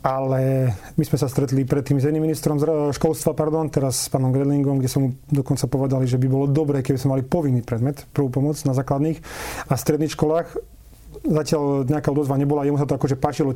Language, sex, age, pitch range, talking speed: Slovak, male, 40-59, 135-155 Hz, 205 wpm